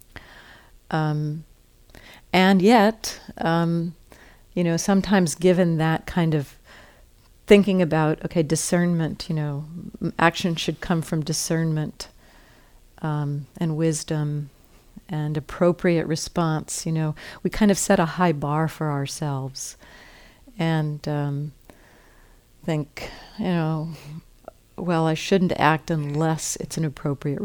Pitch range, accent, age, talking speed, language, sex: 150-175 Hz, American, 50-69, 115 wpm, English, female